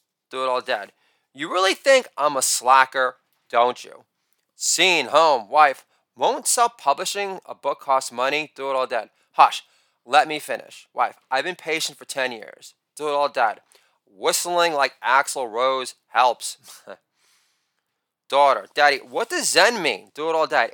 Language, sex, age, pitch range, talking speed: English, male, 30-49, 130-175 Hz, 160 wpm